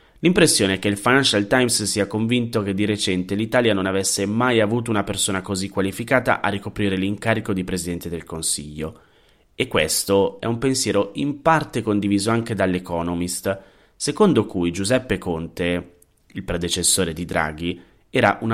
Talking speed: 150 wpm